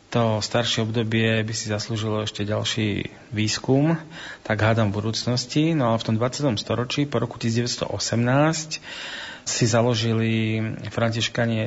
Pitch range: 110-125 Hz